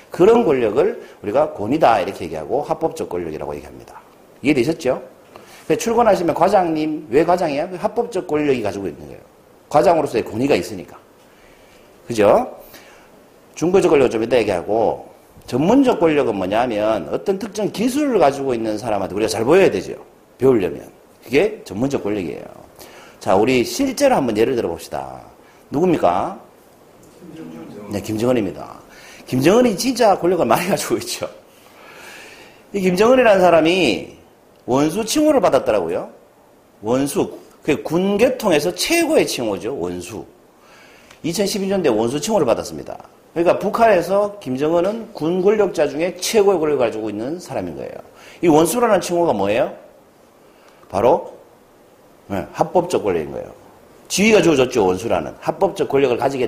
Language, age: Korean, 40-59